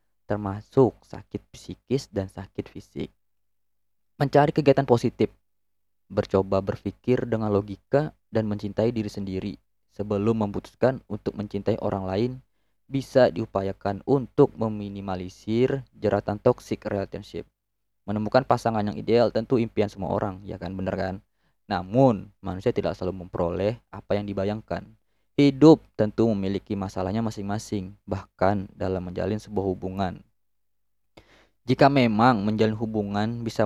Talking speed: 115 wpm